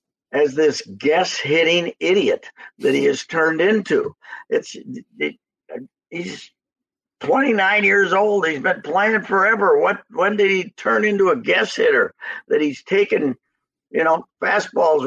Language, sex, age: English, male, 50-69